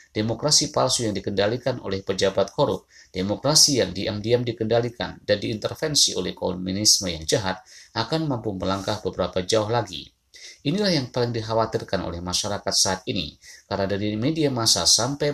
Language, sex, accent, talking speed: Indonesian, male, native, 140 wpm